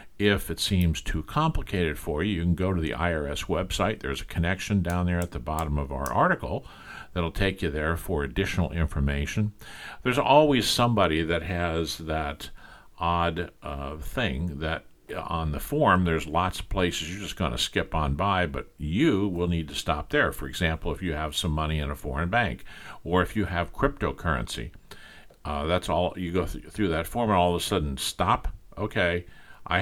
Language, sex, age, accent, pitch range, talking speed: English, male, 50-69, American, 75-95 Hz, 190 wpm